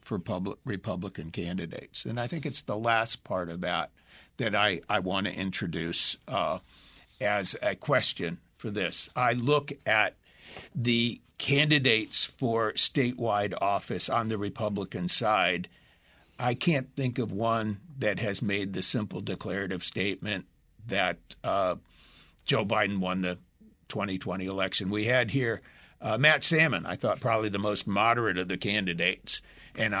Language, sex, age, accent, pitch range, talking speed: English, male, 60-79, American, 100-145 Hz, 145 wpm